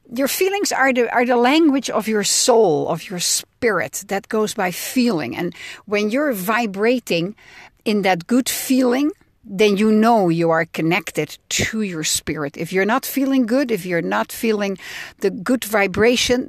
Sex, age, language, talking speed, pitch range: female, 60-79, English, 165 wpm, 190-250 Hz